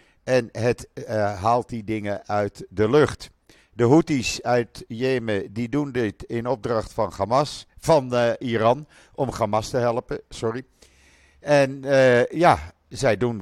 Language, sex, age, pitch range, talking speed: Dutch, male, 50-69, 105-130 Hz, 150 wpm